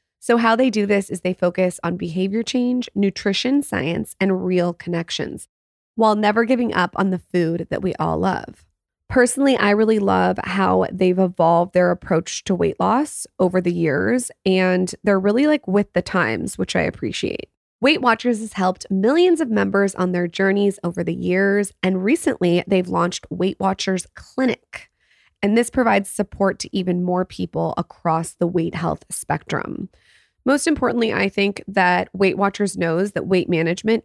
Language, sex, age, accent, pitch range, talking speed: English, female, 20-39, American, 180-220 Hz, 170 wpm